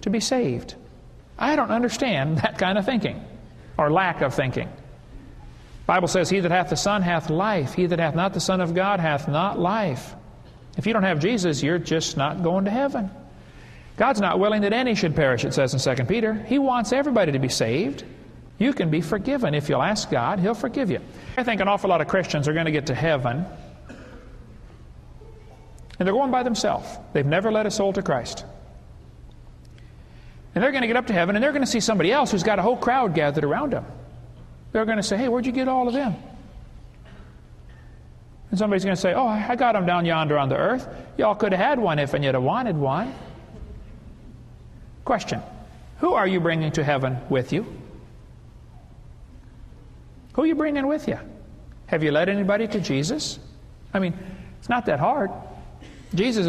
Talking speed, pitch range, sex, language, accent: 195 wpm, 160-225 Hz, male, English, American